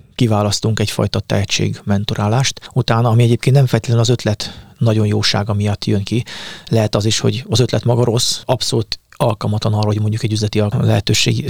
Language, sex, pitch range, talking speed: Hungarian, male, 105-120 Hz, 165 wpm